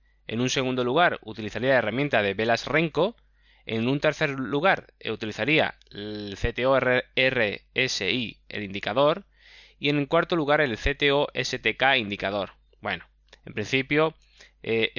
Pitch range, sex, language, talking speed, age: 115-155 Hz, male, Spanish, 125 wpm, 20-39